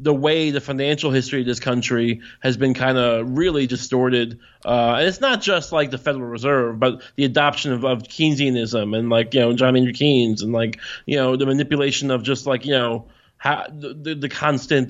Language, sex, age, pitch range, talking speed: English, male, 20-39, 125-150 Hz, 205 wpm